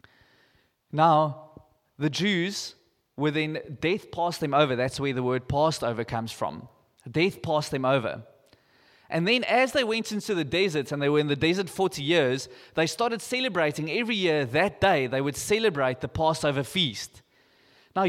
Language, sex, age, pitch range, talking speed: English, male, 20-39, 140-185 Hz, 170 wpm